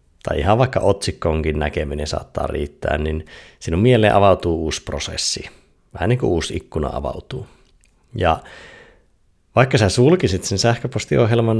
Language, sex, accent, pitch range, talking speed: Finnish, male, native, 80-105 Hz, 130 wpm